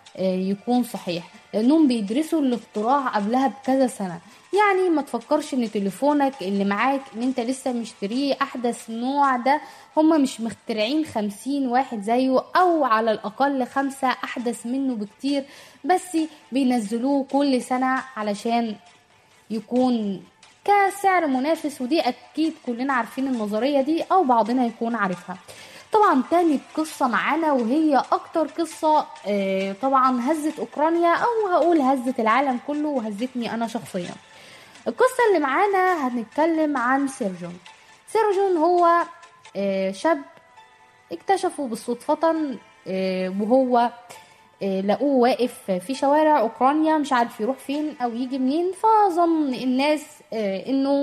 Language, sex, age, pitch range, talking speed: Arabic, female, 10-29, 230-305 Hz, 115 wpm